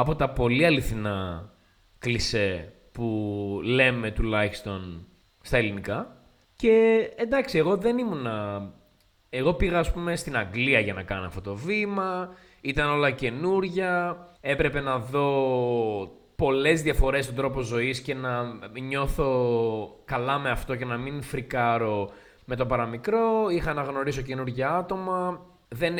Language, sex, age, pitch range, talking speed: Greek, male, 20-39, 110-160 Hz, 130 wpm